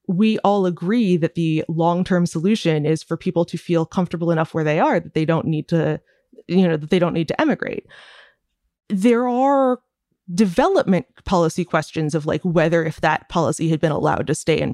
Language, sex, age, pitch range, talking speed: English, female, 20-39, 165-210 Hz, 195 wpm